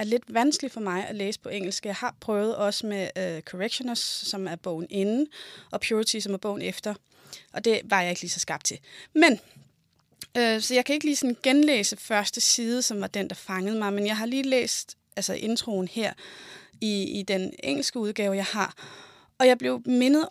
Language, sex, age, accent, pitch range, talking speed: Danish, female, 20-39, native, 195-240 Hz, 210 wpm